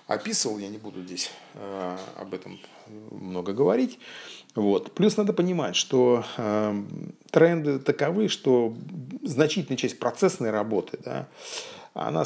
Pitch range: 105-155 Hz